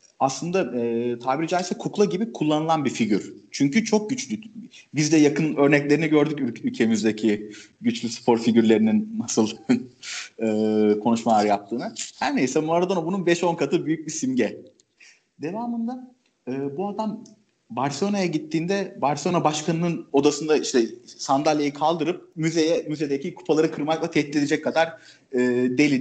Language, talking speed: Turkish, 125 wpm